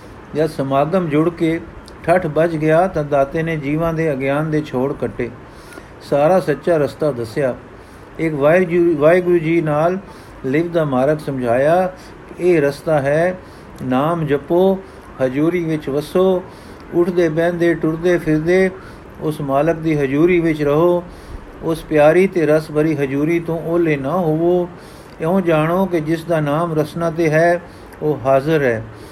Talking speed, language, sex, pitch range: 145 wpm, Punjabi, male, 145-170 Hz